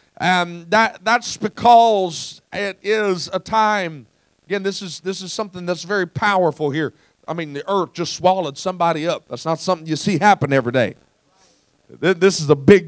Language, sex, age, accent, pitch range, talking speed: English, male, 40-59, American, 165-215 Hz, 170 wpm